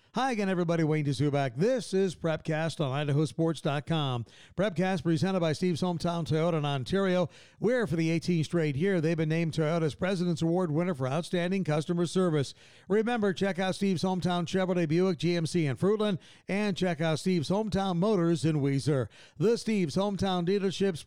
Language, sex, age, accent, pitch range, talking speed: English, male, 50-69, American, 155-190 Hz, 160 wpm